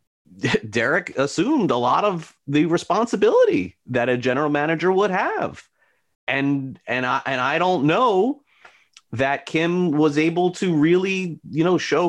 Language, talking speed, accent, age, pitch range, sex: English, 145 wpm, American, 30-49, 110-175 Hz, male